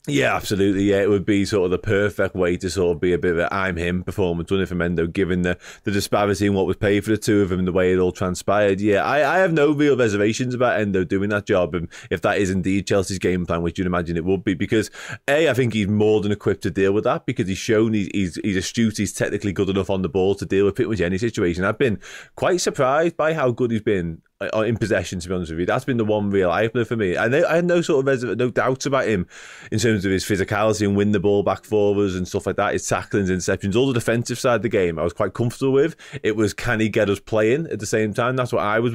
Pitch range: 95-115 Hz